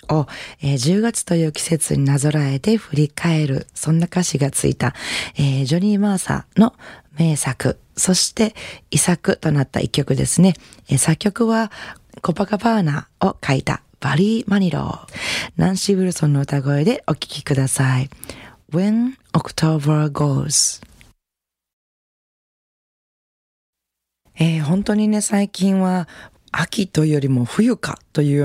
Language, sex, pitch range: Japanese, female, 135-180 Hz